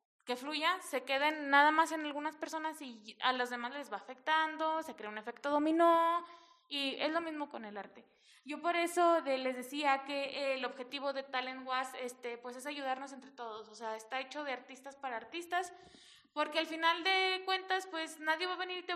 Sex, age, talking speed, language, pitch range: female, 20-39, 200 wpm, Spanish, 255-330 Hz